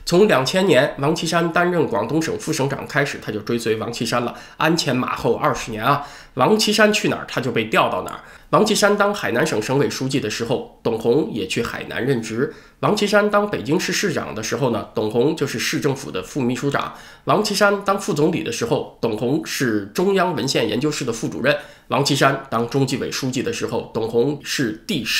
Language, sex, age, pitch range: Chinese, male, 20-39, 130-180 Hz